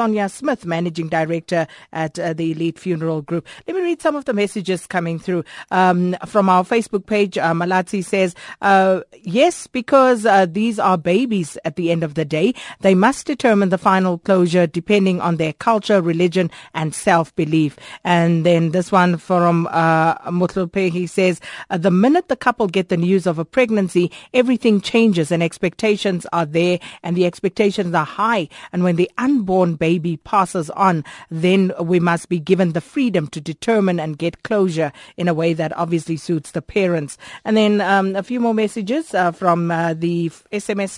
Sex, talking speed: female, 175 wpm